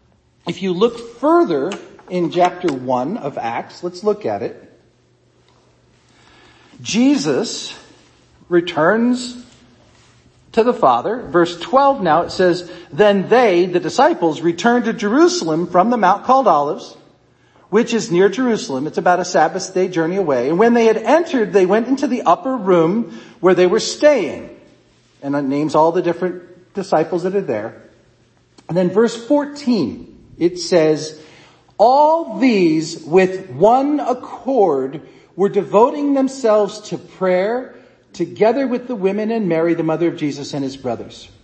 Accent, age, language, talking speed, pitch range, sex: American, 50-69, English, 145 wpm, 155-235 Hz, male